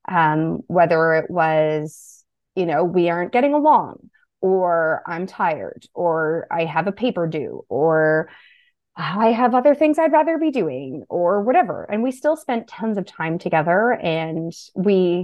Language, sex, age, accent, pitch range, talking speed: English, female, 20-39, American, 160-220 Hz, 160 wpm